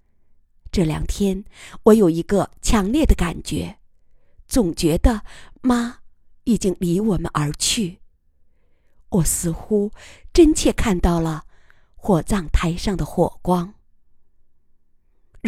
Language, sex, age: Chinese, female, 50-69